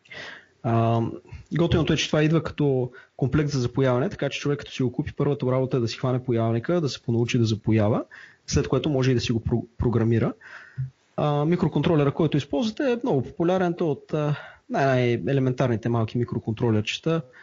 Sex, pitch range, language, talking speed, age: male, 125-160 Hz, Bulgarian, 160 wpm, 30-49